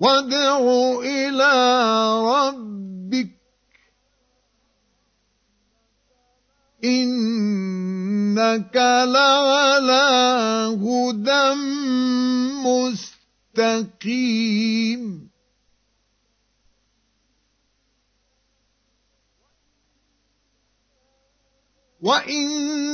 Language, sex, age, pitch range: Arabic, male, 50-69, 220-270 Hz